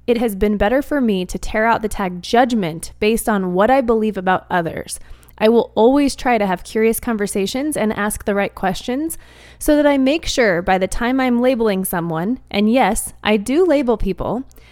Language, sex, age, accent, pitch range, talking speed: English, female, 20-39, American, 195-255 Hz, 200 wpm